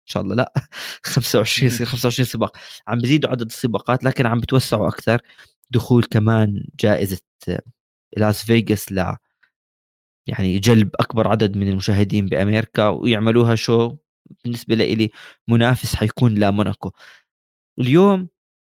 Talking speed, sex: 120 wpm, male